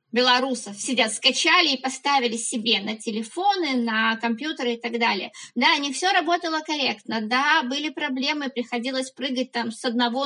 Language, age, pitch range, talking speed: Russian, 20-39, 235-290 Hz, 150 wpm